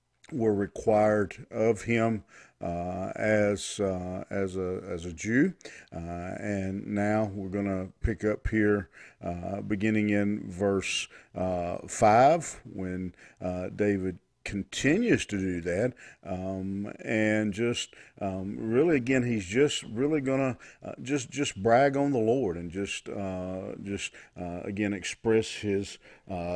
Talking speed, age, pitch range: 135 wpm, 50-69, 95-120 Hz